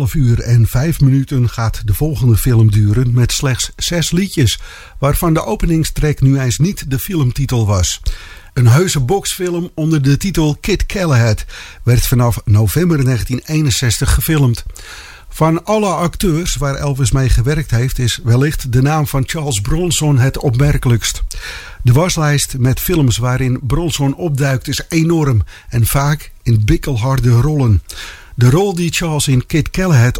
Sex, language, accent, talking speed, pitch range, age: male, English, Dutch, 145 wpm, 120-150 Hz, 50-69